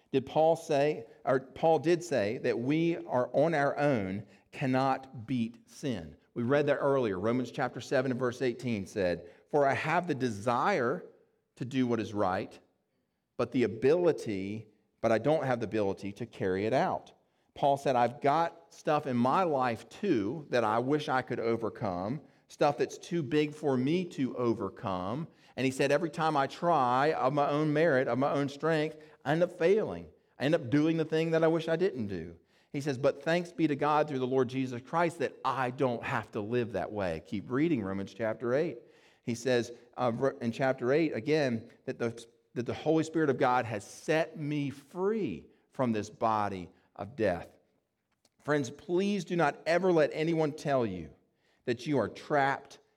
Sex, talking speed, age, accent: male, 185 wpm, 40-59, American